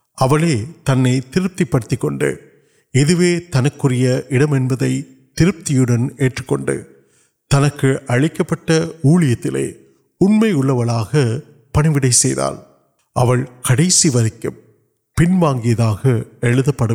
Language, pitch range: Urdu, 125-165 Hz